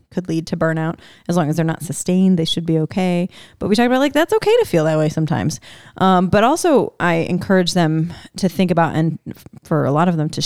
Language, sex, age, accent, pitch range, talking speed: English, female, 20-39, American, 160-215 Hz, 240 wpm